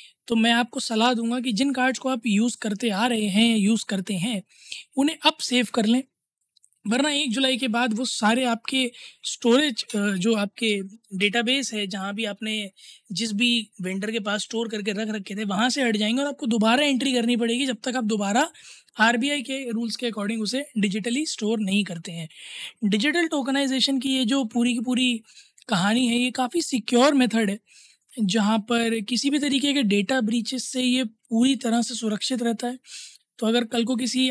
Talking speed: 190 wpm